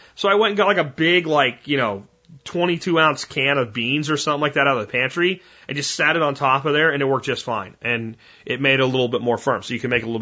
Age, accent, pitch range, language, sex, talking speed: 30-49, American, 120-155 Hz, English, male, 305 wpm